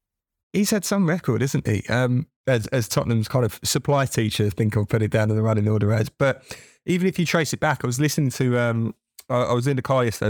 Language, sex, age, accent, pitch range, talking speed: English, male, 20-39, British, 105-125 Hz, 255 wpm